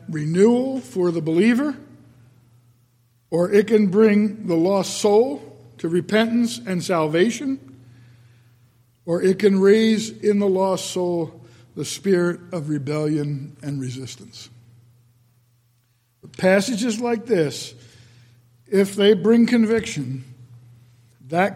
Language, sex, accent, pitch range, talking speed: English, male, American, 120-190 Hz, 105 wpm